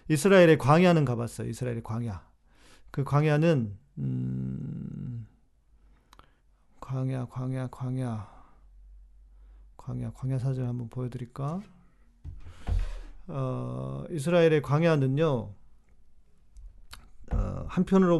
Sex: male